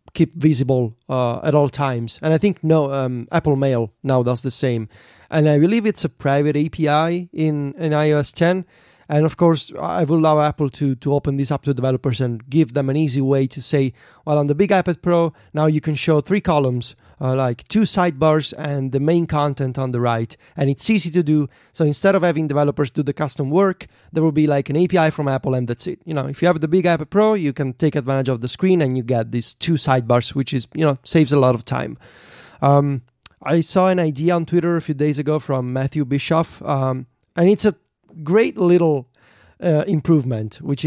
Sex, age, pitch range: male, 30-49, 135-170 Hz